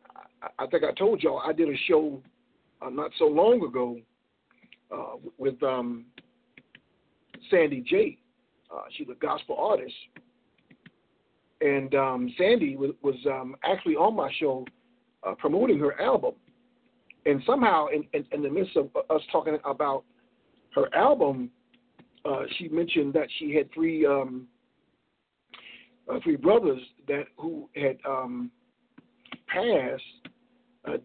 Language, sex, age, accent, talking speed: English, male, 50-69, American, 130 wpm